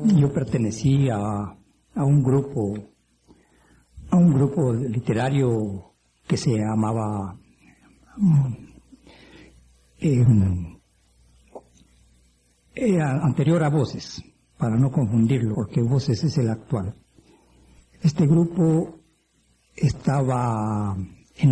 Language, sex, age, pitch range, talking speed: Spanish, male, 50-69, 100-150 Hz, 80 wpm